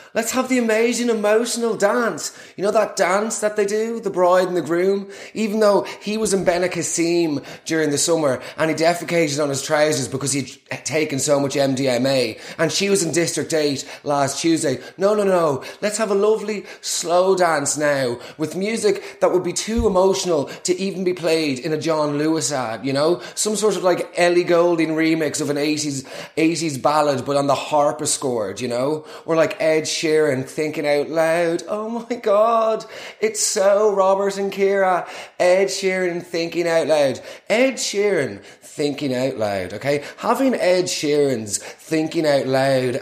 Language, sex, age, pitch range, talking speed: English, male, 30-49, 150-195 Hz, 180 wpm